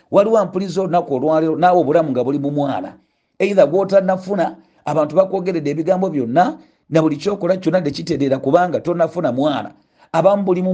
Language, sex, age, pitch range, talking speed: English, male, 50-69, 155-195 Hz, 160 wpm